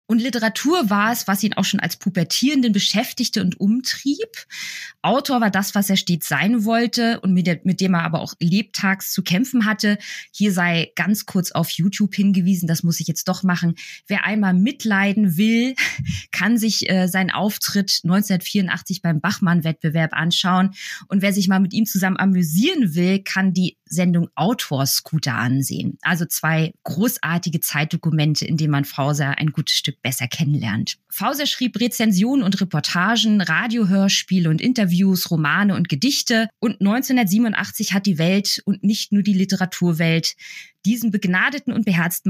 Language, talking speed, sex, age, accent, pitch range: German, 155 wpm, female, 20-39, German, 170-215 Hz